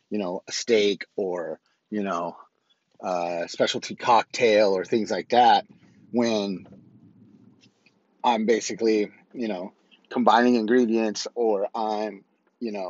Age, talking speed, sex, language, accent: 30-49, 115 wpm, male, English, American